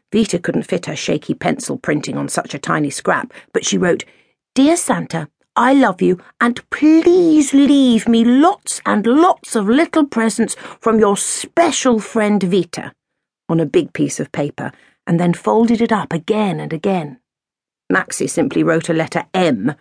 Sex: female